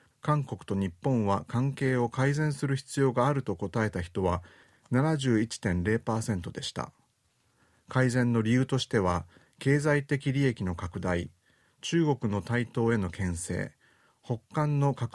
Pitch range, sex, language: 100-135 Hz, male, Japanese